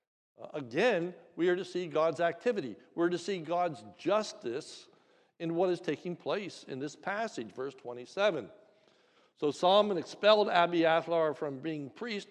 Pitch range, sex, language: 150-185 Hz, male, English